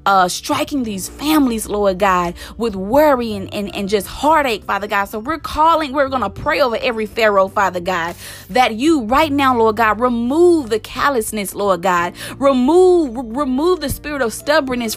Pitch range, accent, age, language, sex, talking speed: 210-280 Hz, American, 20-39, English, female, 175 wpm